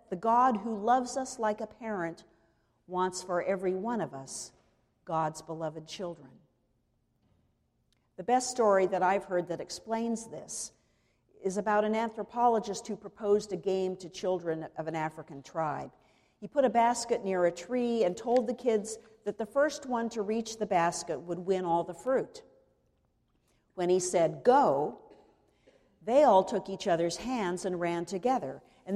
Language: English